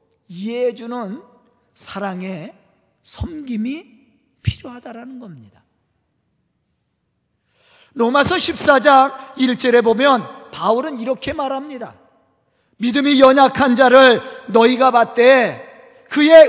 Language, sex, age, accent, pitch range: Korean, male, 40-59, native, 220-320 Hz